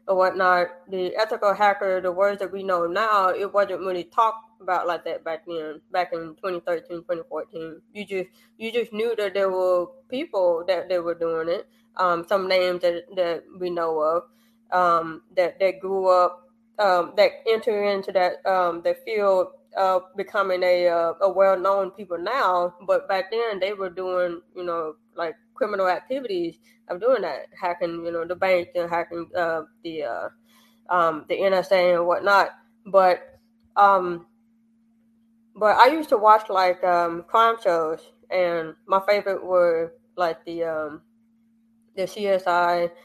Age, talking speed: 20-39, 165 wpm